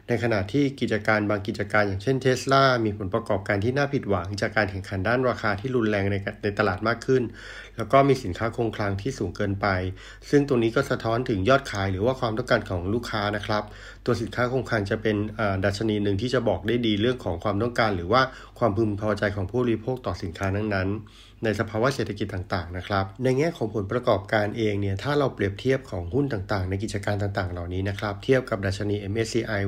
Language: Thai